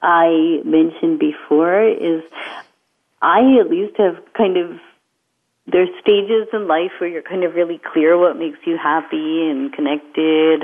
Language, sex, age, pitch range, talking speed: English, female, 40-59, 165-230 Hz, 145 wpm